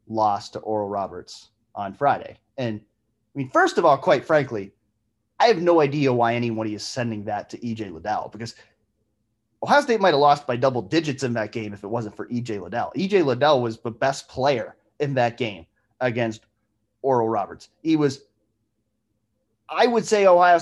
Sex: male